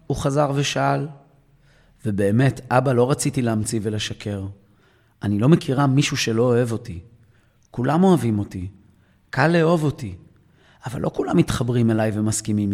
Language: Hebrew